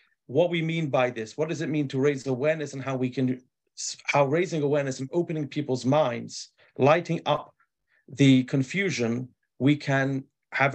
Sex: male